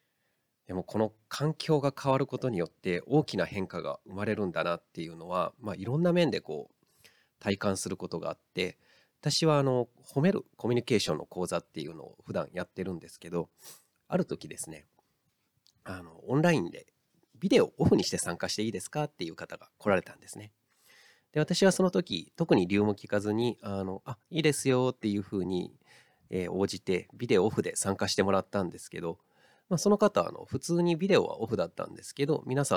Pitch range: 95-145 Hz